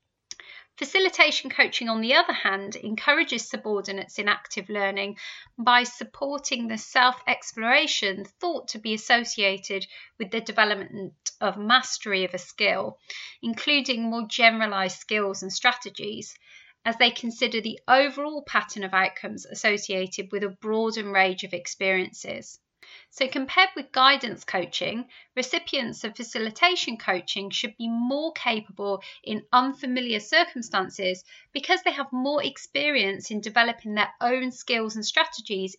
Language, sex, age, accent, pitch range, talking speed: English, female, 30-49, British, 205-275 Hz, 125 wpm